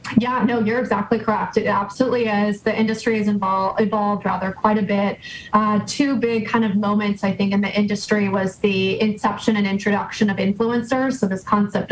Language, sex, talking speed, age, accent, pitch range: English, female, 190 wpm, 20-39, American, 195-225 Hz